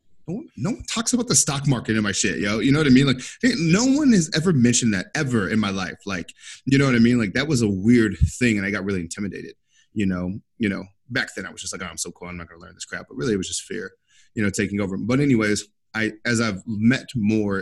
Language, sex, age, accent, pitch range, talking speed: English, male, 30-49, American, 100-125 Hz, 285 wpm